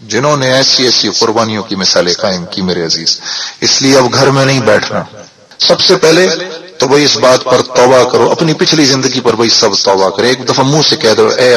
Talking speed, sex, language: 225 wpm, male, Urdu